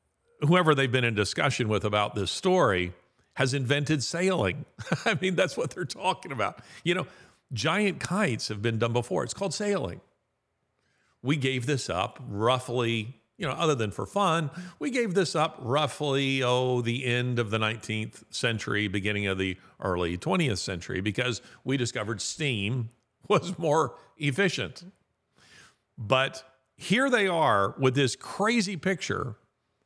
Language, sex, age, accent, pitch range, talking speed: English, male, 50-69, American, 105-150 Hz, 150 wpm